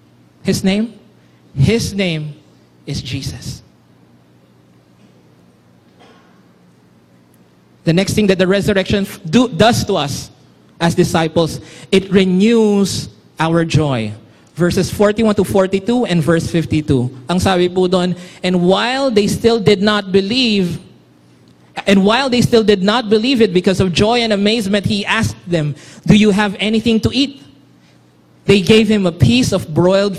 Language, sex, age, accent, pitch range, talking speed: English, male, 20-39, Filipino, 155-220 Hz, 135 wpm